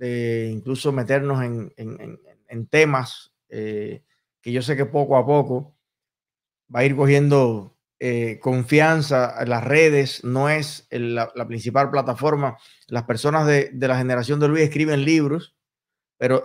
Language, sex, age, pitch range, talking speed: Spanish, male, 30-49, 130-170 Hz, 155 wpm